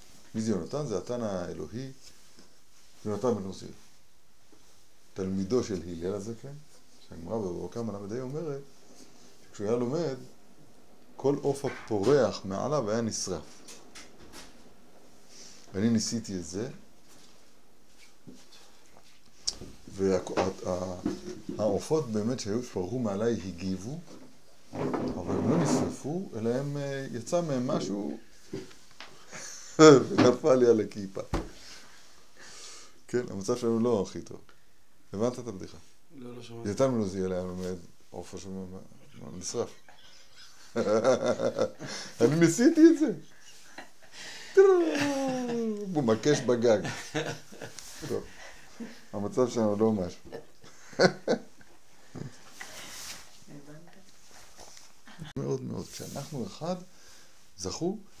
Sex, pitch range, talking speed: male, 95-145 Hz, 75 wpm